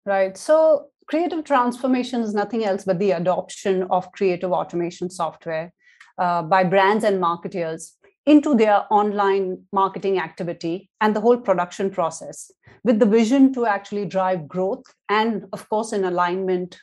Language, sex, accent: English, female, Indian